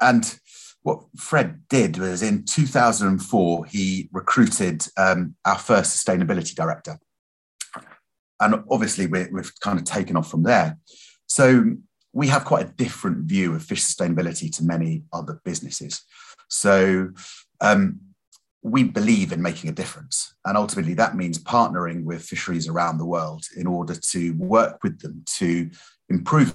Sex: male